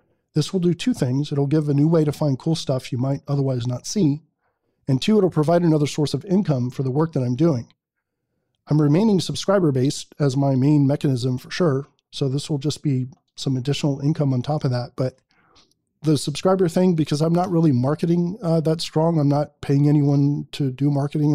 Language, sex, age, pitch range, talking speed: English, male, 40-59, 135-160 Hz, 205 wpm